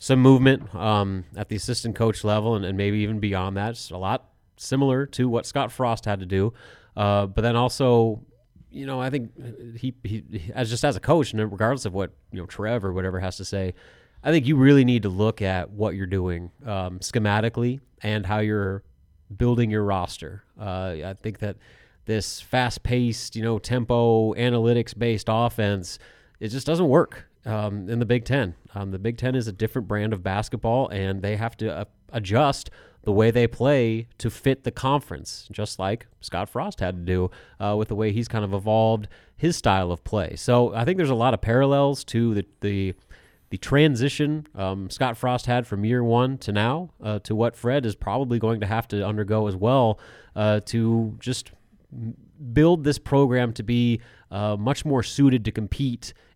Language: English